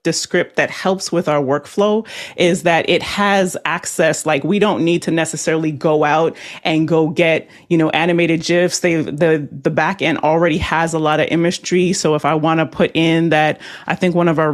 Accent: American